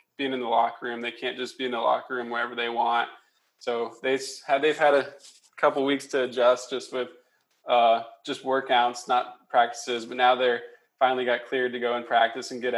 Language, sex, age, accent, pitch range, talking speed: English, male, 20-39, American, 120-135 Hz, 210 wpm